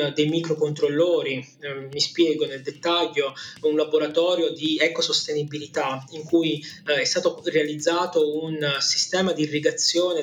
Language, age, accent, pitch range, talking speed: Italian, 20-39, native, 145-170 Hz, 125 wpm